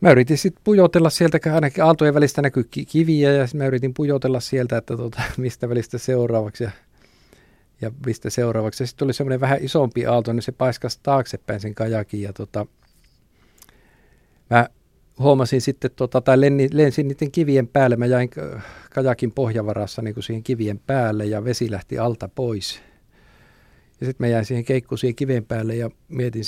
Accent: native